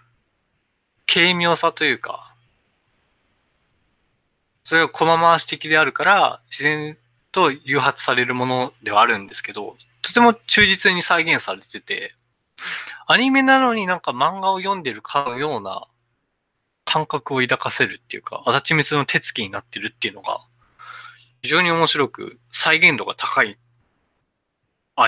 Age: 20-39